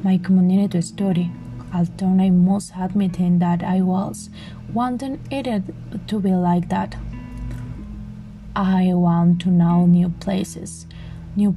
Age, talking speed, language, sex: 20-39, 125 wpm, English, female